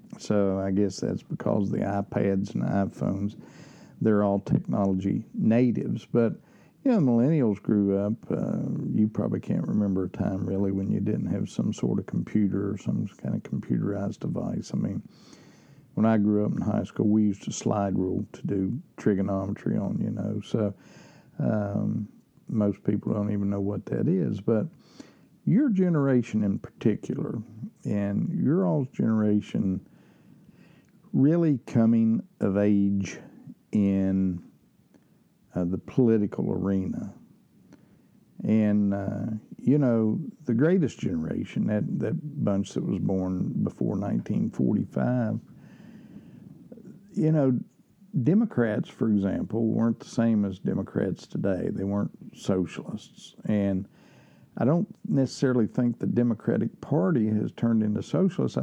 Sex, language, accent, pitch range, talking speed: male, English, American, 100-125 Hz, 135 wpm